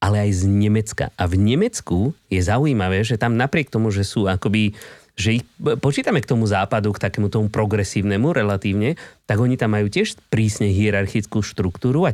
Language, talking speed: Slovak, 180 wpm